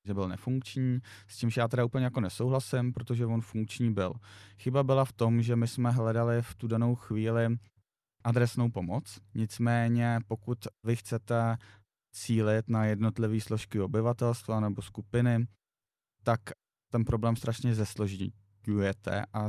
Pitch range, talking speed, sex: 95-115 Hz, 140 wpm, male